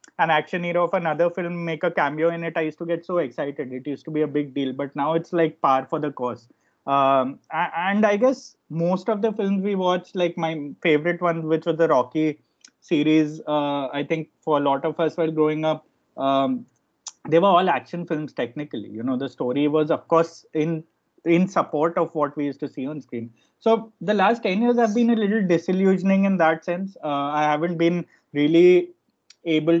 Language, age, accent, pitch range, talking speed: English, 20-39, Indian, 145-175 Hz, 215 wpm